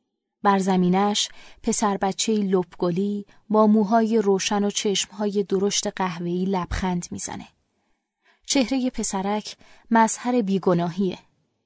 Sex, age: female, 20-39